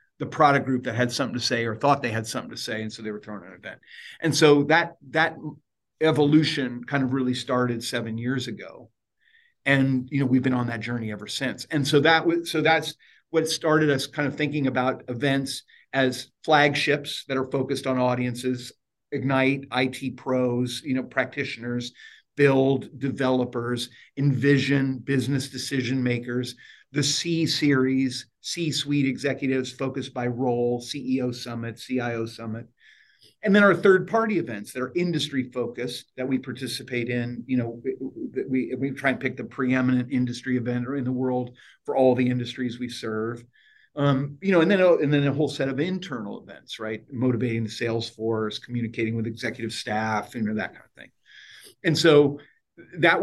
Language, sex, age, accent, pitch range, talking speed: English, male, 50-69, American, 120-145 Hz, 175 wpm